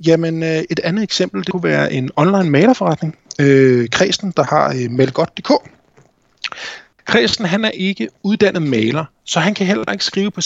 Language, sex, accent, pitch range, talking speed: Danish, male, native, 140-195 Hz, 160 wpm